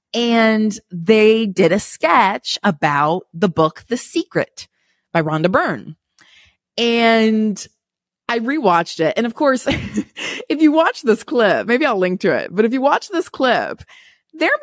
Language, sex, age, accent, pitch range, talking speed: English, female, 30-49, American, 165-255 Hz, 150 wpm